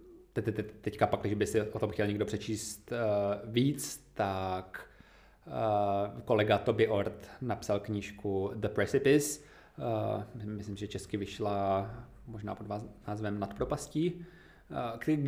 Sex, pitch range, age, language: male, 100-115 Hz, 20-39, Czech